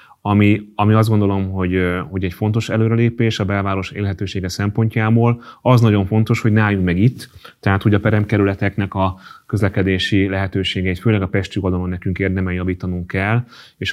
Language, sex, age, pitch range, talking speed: Hungarian, male, 30-49, 95-110 Hz, 160 wpm